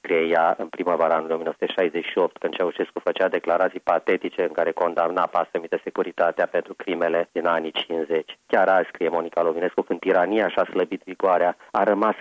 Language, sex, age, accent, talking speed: Romanian, male, 30-49, native, 160 wpm